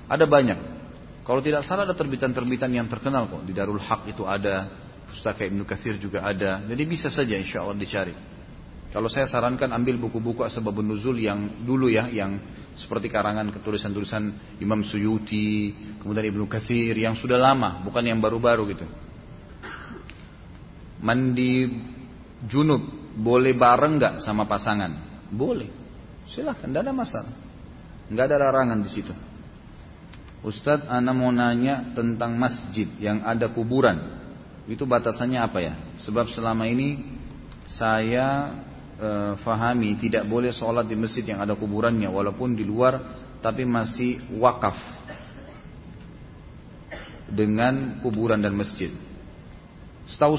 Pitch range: 105-125 Hz